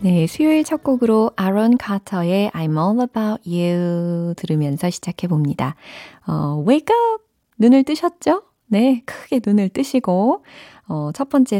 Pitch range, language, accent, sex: 160-255 Hz, Korean, native, female